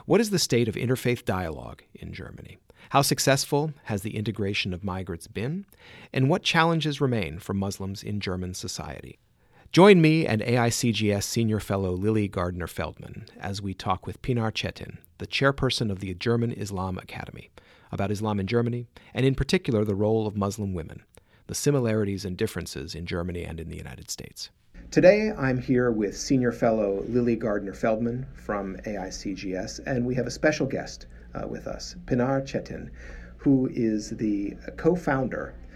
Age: 40-59